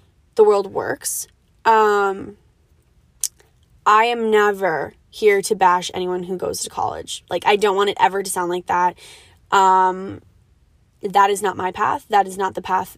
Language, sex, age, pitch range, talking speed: English, female, 20-39, 190-230 Hz, 165 wpm